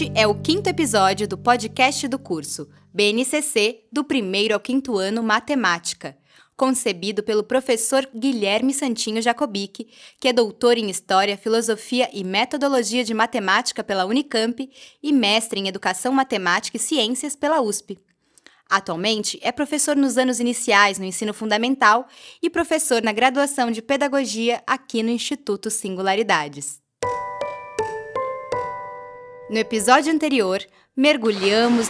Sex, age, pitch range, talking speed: female, 20-39, 195-270 Hz, 120 wpm